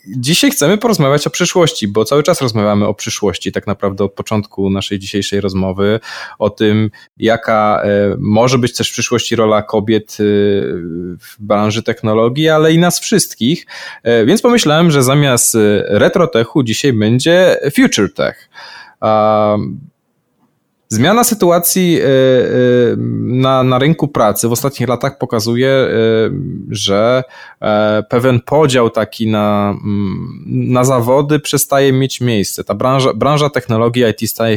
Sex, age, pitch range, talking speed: male, 20-39, 105-140 Hz, 125 wpm